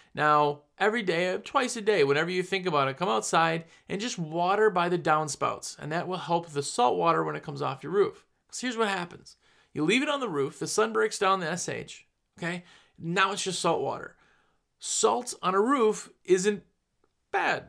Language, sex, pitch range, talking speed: English, male, 140-190 Hz, 205 wpm